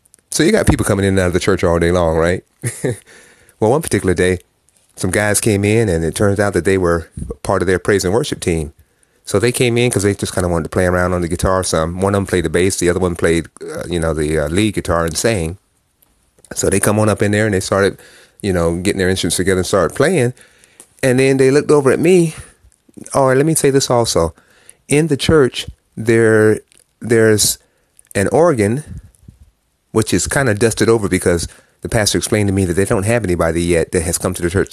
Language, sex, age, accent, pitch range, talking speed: English, male, 30-49, American, 85-110 Hz, 235 wpm